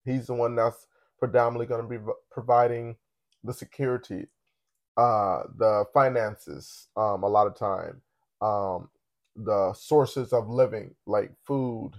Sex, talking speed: male, 130 wpm